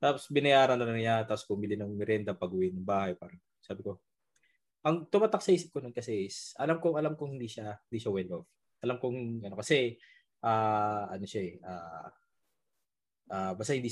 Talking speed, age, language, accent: 195 wpm, 20-39, Filipino, native